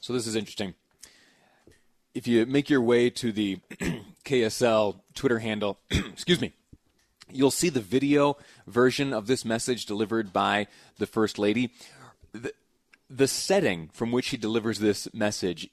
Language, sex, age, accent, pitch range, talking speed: English, male, 30-49, American, 100-130 Hz, 145 wpm